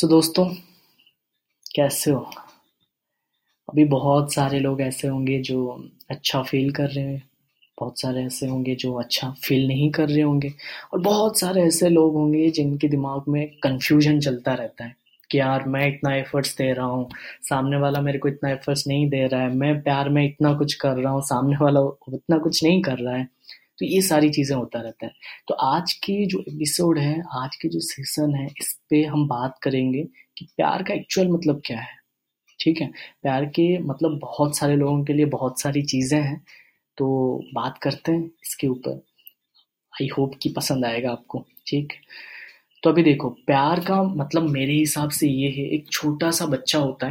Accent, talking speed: native, 190 wpm